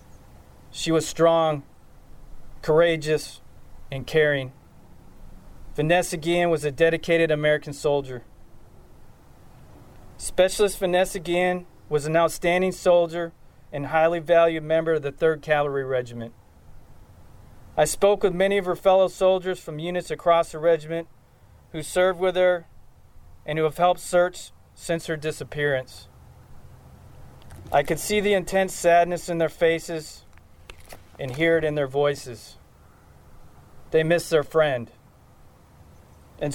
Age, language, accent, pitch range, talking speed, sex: 40-59, English, American, 140-175 Hz, 120 wpm, male